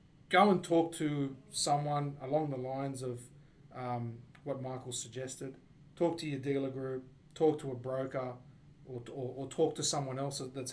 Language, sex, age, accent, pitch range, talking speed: English, male, 30-49, Australian, 130-155 Hz, 160 wpm